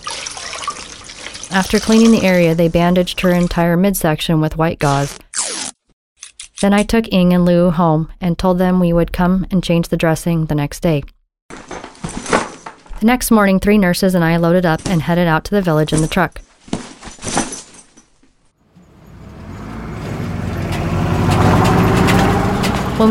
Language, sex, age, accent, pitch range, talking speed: English, female, 30-49, American, 160-195 Hz, 130 wpm